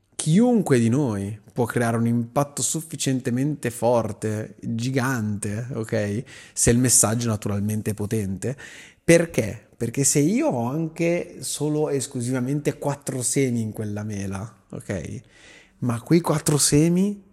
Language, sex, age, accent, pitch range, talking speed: Italian, male, 30-49, native, 110-145 Hz, 125 wpm